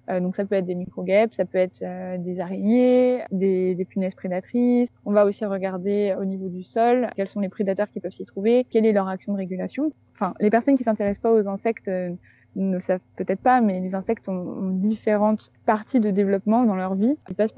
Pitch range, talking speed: 190-220 Hz, 225 wpm